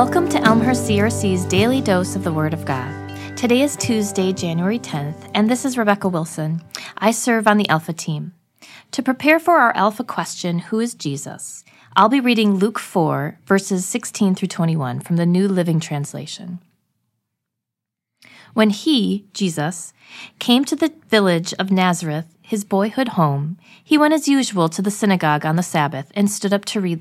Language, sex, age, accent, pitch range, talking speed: English, female, 30-49, American, 165-220 Hz, 170 wpm